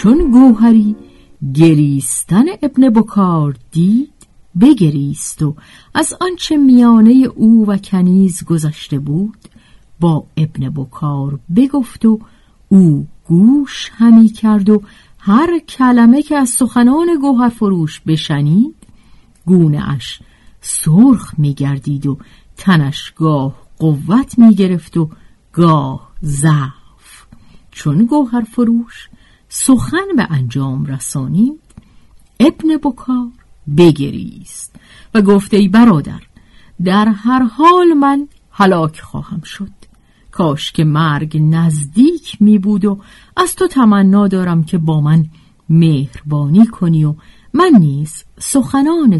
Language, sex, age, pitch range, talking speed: Persian, female, 50-69, 155-245 Hz, 105 wpm